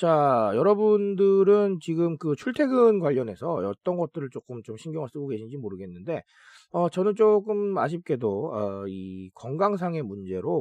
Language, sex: Korean, male